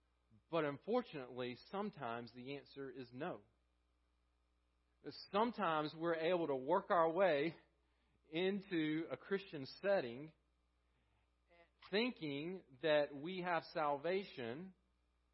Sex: male